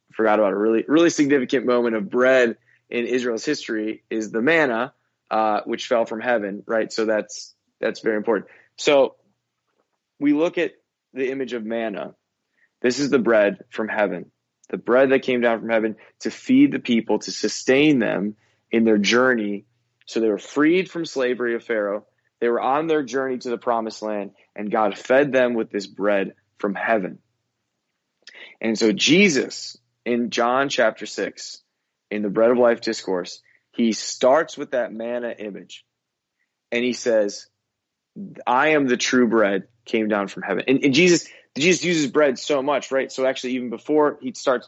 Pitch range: 110-135 Hz